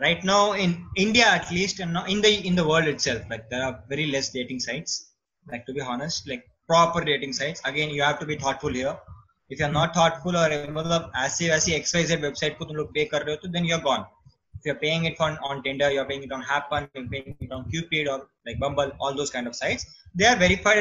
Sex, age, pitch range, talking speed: male, 20-39, 135-165 Hz, 270 wpm